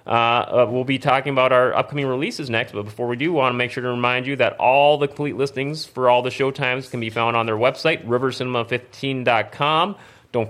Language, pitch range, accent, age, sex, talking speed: English, 115-145 Hz, American, 30-49, male, 215 wpm